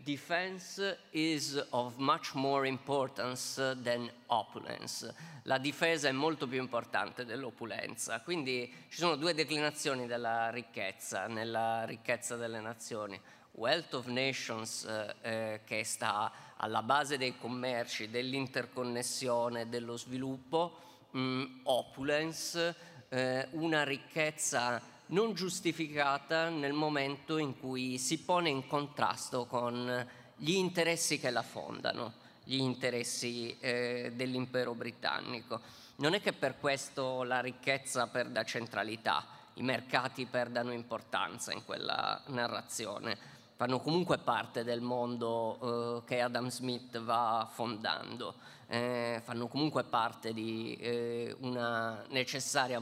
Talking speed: 115 wpm